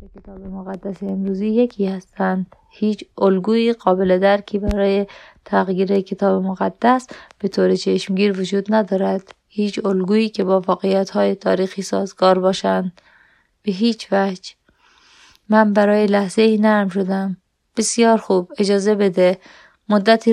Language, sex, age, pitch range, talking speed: Persian, female, 20-39, 185-210 Hz, 120 wpm